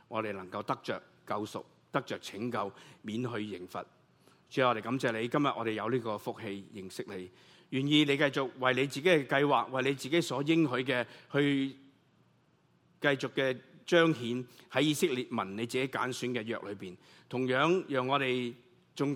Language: Chinese